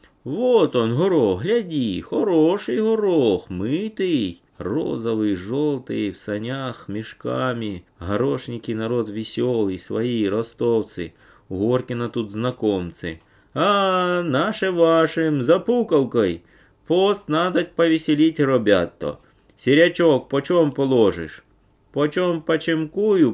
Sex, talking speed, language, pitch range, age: male, 85 wpm, Russian, 95-145 Hz, 30-49